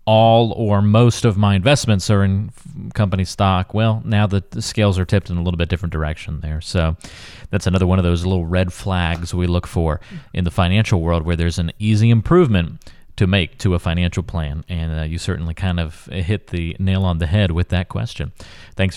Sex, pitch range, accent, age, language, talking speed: male, 90-120 Hz, American, 30-49, English, 210 wpm